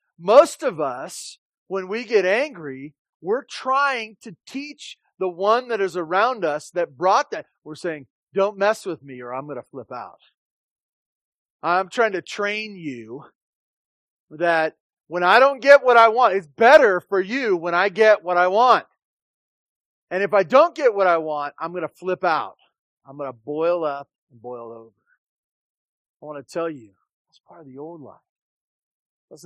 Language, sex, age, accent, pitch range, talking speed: English, male, 40-59, American, 140-195 Hz, 180 wpm